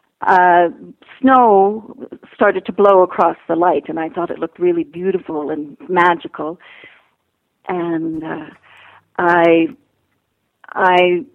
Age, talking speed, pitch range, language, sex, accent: 50-69, 110 wpm, 165-200 Hz, English, female, American